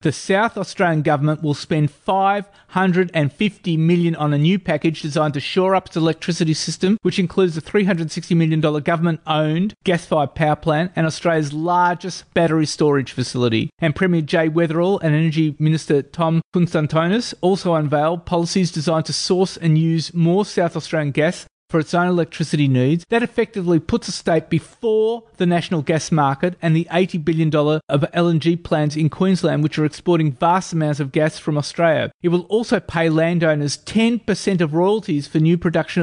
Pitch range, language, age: 155-180 Hz, English, 30-49